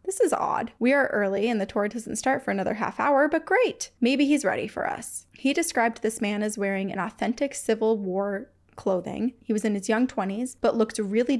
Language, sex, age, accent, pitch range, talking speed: English, female, 20-39, American, 200-245 Hz, 220 wpm